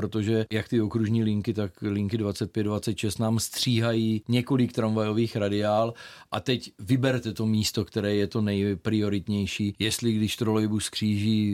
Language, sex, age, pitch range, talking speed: Czech, male, 40-59, 100-115 Hz, 135 wpm